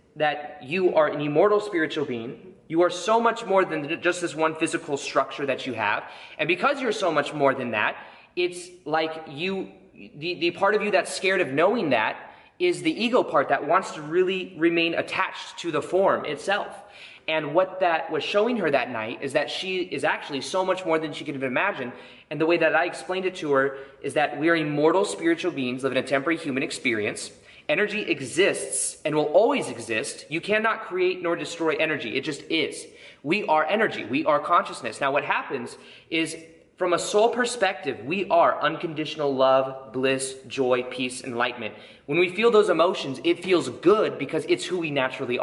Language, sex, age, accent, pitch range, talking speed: English, male, 20-39, American, 150-200 Hz, 195 wpm